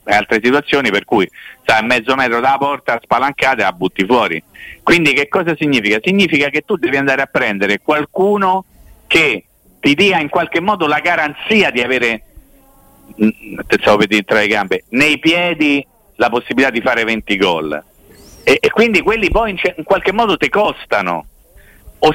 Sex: male